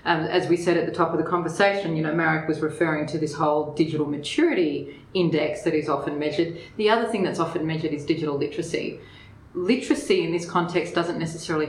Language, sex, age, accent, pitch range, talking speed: English, female, 30-49, Australian, 150-180 Hz, 205 wpm